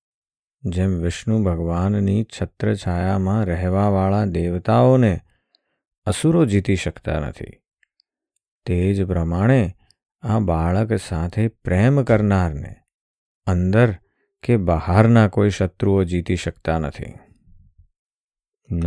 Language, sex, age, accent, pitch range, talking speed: Gujarati, male, 50-69, native, 85-105 Hz, 85 wpm